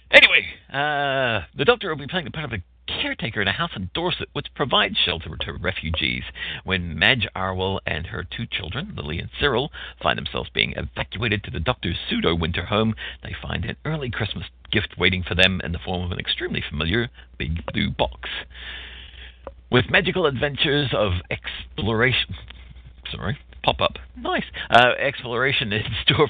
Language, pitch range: English, 85-125 Hz